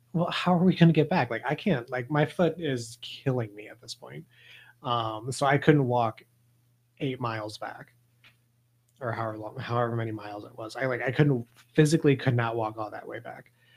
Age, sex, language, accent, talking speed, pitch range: 30-49, male, English, American, 210 wpm, 120-145 Hz